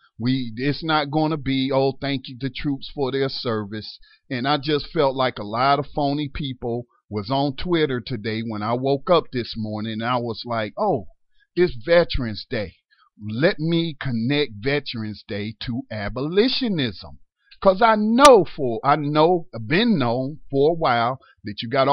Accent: American